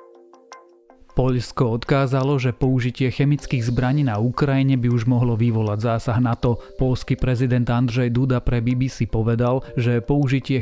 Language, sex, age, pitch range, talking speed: Slovak, male, 30-49, 120-135 Hz, 130 wpm